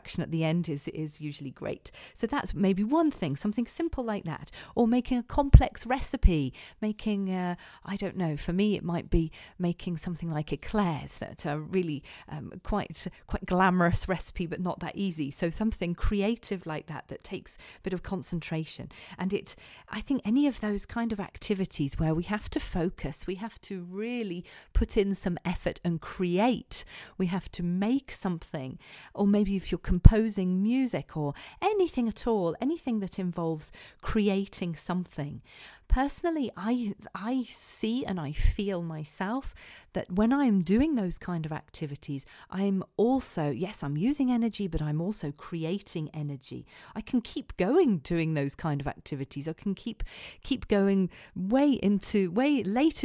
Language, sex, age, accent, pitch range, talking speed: English, female, 40-59, British, 165-220 Hz, 165 wpm